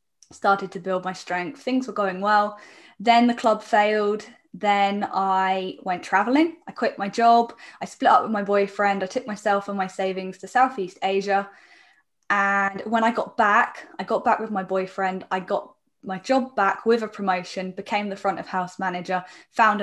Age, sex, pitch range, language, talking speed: 10-29, female, 185-220 Hz, English, 190 wpm